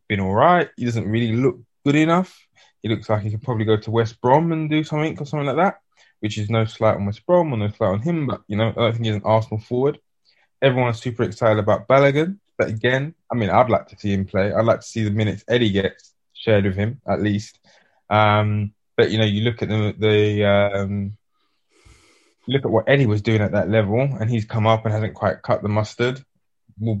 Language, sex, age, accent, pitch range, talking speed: English, male, 20-39, British, 105-130 Hz, 235 wpm